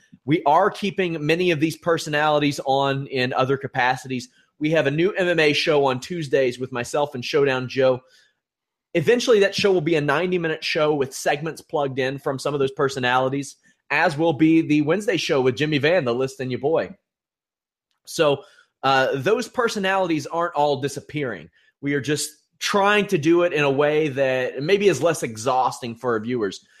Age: 30-49